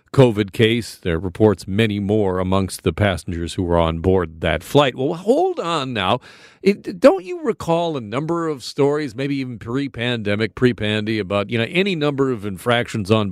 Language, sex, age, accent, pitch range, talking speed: English, male, 40-59, American, 105-170 Hz, 180 wpm